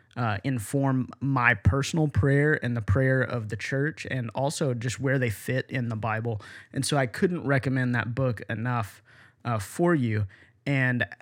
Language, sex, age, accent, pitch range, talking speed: English, male, 30-49, American, 115-135 Hz, 170 wpm